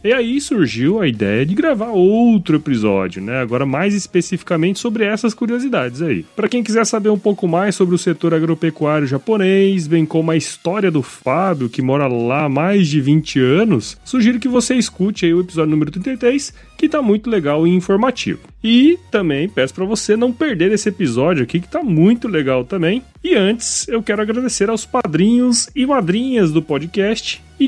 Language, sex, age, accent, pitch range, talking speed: Portuguese, male, 30-49, Brazilian, 155-225 Hz, 185 wpm